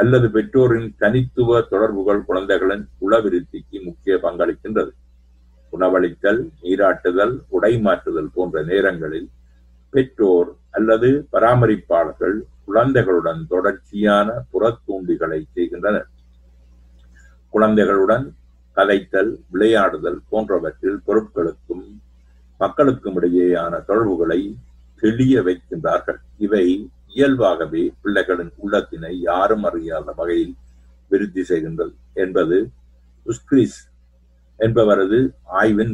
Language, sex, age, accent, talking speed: Tamil, male, 50-69, native, 75 wpm